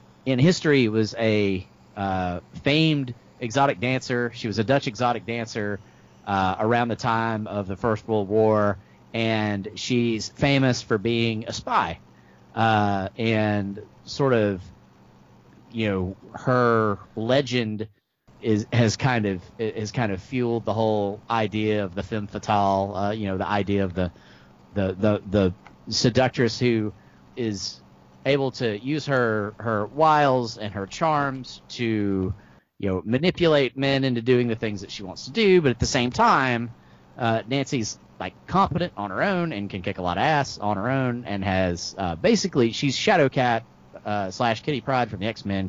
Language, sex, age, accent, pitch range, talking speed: English, male, 40-59, American, 100-125 Hz, 165 wpm